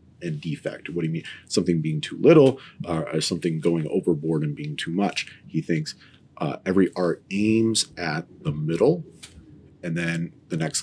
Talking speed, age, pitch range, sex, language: 175 wpm, 30-49, 85-115 Hz, male, English